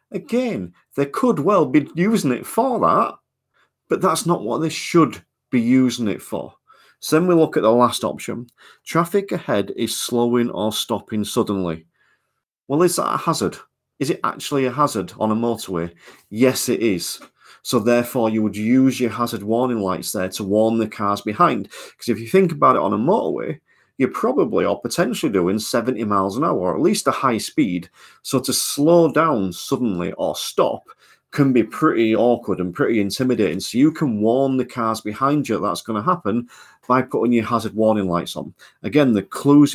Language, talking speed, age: English, 190 wpm, 40-59